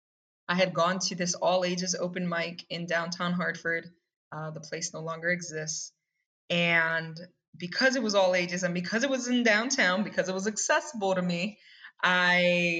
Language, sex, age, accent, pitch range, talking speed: English, female, 20-39, American, 170-210 Hz, 175 wpm